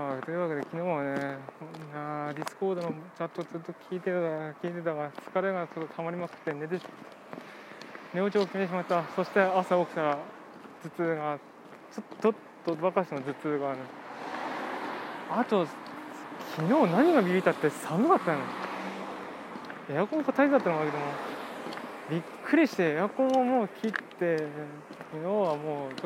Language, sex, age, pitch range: Japanese, male, 20-39, 150-190 Hz